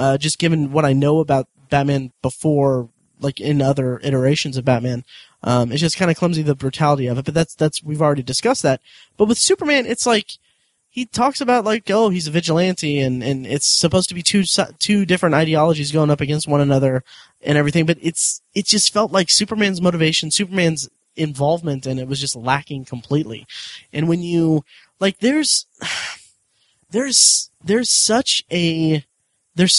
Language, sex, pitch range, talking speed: English, male, 140-185 Hz, 180 wpm